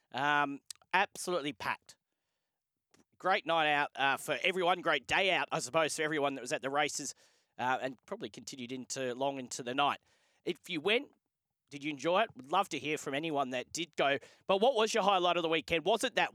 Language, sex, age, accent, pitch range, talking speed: English, male, 30-49, Australian, 150-185 Hz, 210 wpm